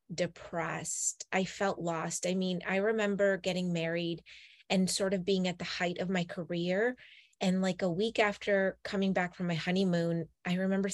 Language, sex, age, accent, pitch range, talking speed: English, female, 20-39, American, 165-195 Hz, 175 wpm